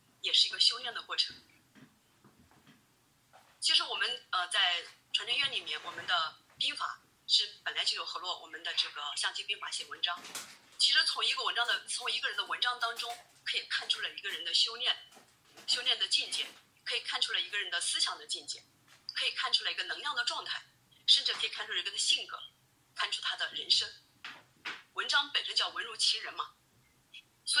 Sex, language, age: female, Chinese, 30-49